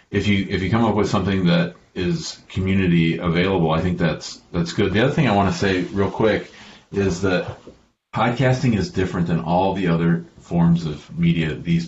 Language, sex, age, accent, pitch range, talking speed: English, male, 40-59, American, 85-95 Hz, 195 wpm